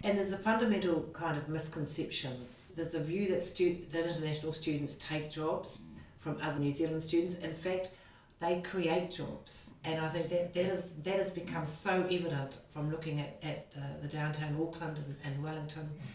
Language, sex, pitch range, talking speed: English, female, 155-175 Hz, 180 wpm